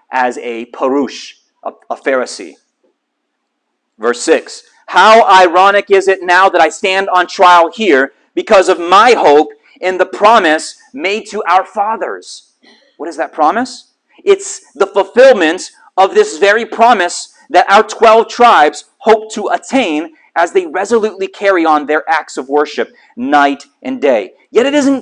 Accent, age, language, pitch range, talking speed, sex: American, 40-59, English, 170-265 Hz, 155 wpm, male